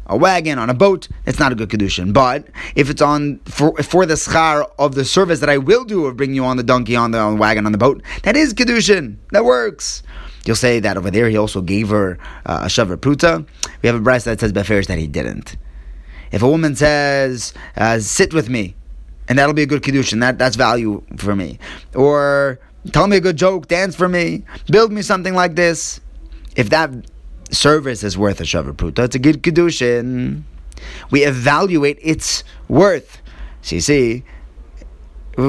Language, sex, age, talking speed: English, male, 20-39, 200 wpm